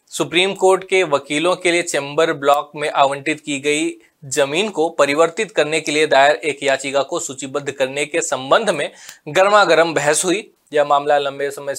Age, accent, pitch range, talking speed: 20-39, native, 145-185 Hz, 175 wpm